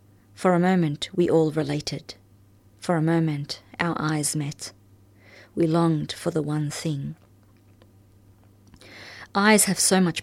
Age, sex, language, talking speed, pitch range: 30-49, female, English, 130 wpm, 105-170 Hz